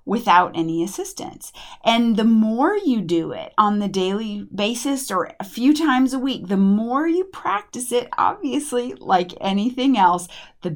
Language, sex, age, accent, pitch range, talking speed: English, female, 30-49, American, 180-250 Hz, 160 wpm